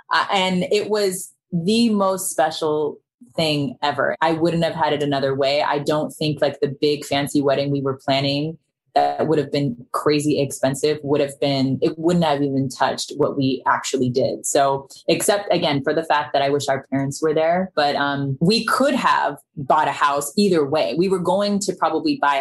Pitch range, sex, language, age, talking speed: 140-175 Hz, female, English, 20-39, 200 wpm